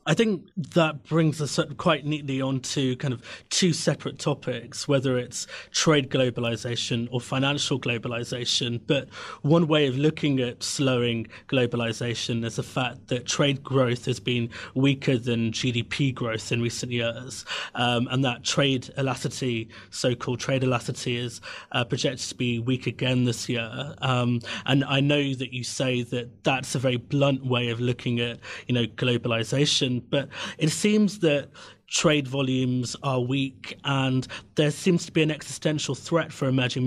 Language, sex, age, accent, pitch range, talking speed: English, male, 30-49, British, 120-140 Hz, 160 wpm